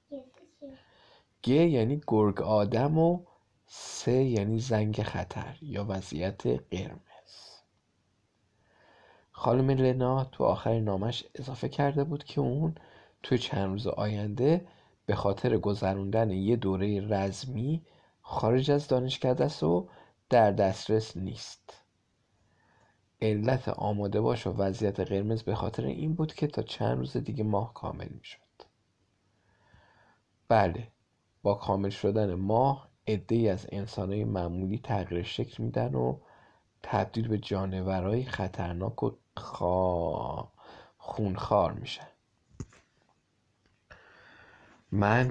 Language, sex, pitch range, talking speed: Persian, male, 100-125 Hz, 105 wpm